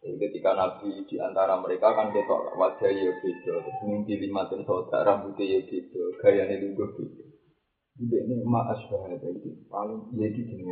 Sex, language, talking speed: male, Indonesian, 145 wpm